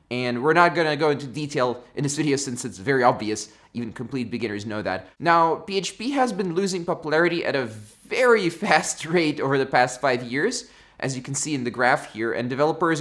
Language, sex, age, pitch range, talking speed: English, male, 20-39, 130-165 Hz, 210 wpm